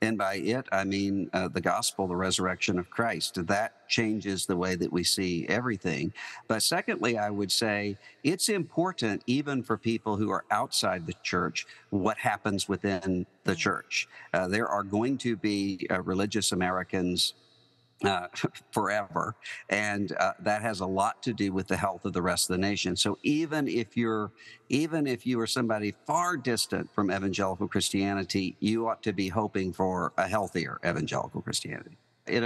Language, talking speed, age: English, 170 wpm, 50-69